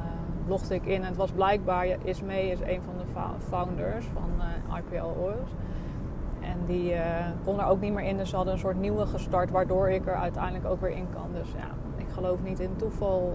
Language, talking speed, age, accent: Dutch, 225 wpm, 20-39, Dutch